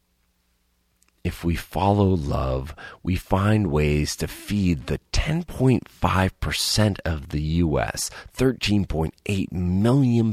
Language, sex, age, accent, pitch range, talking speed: English, male, 40-59, American, 75-95 Hz, 95 wpm